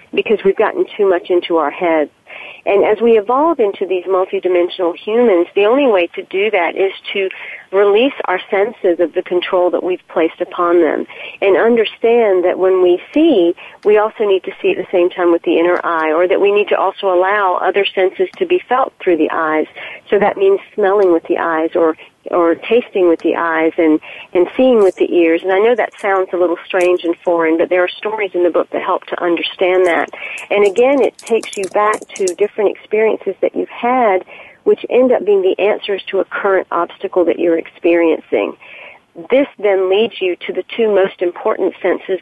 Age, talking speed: 40-59, 205 wpm